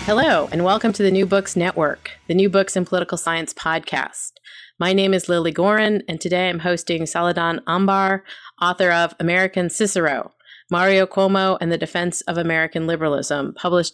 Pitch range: 165-190 Hz